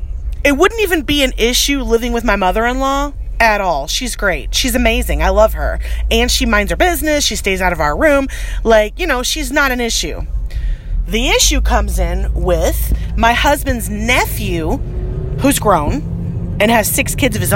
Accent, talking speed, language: American, 190 wpm, English